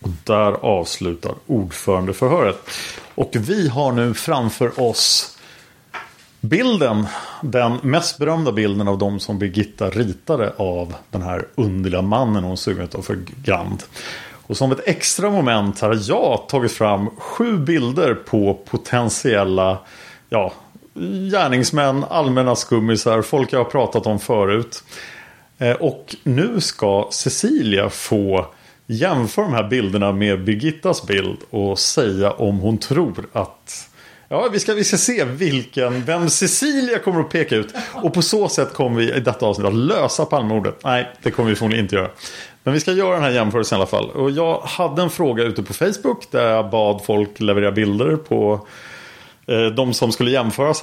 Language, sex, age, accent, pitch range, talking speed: Swedish, male, 30-49, Norwegian, 105-145 Hz, 155 wpm